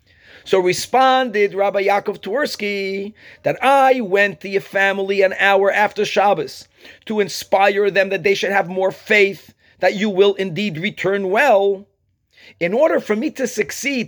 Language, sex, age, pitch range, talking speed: English, male, 40-59, 195-260 Hz, 155 wpm